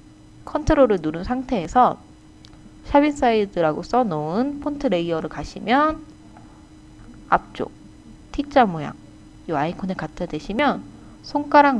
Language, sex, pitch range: Korean, female, 155-255 Hz